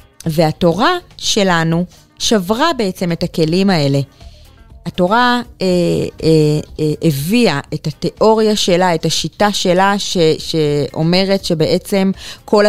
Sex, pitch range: female, 165-205 Hz